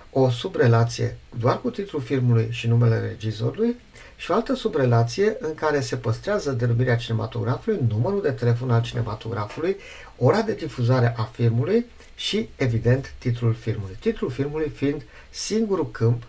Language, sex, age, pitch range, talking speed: Romanian, male, 50-69, 115-135 Hz, 140 wpm